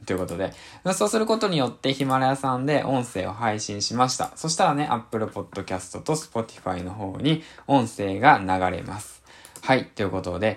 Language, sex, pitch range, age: Japanese, male, 105-160 Hz, 20-39